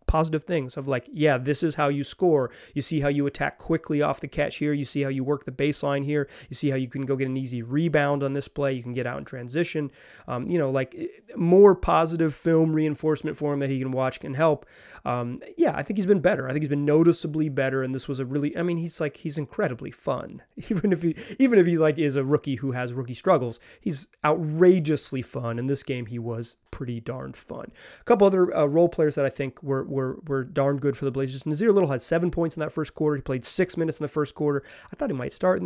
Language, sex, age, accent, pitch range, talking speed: English, male, 30-49, American, 135-160 Hz, 260 wpm